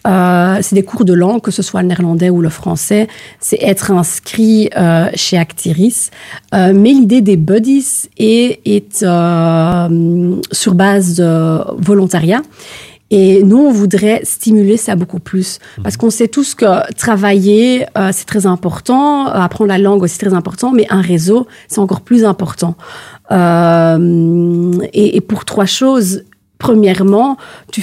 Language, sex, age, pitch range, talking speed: French, female, 40-59, 180-215 Hz, 155 wpm